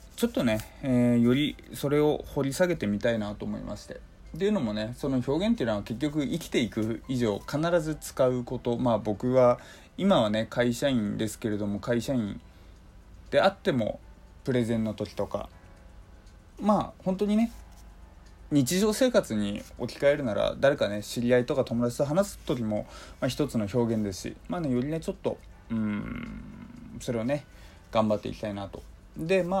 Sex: male